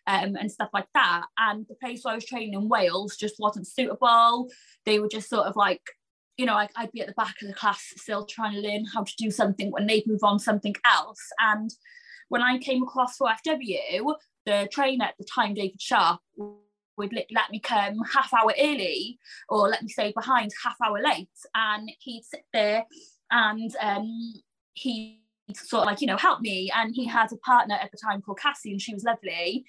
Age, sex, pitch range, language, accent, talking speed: 20-39, female, 205-250 Hz, English, British, 210 wpm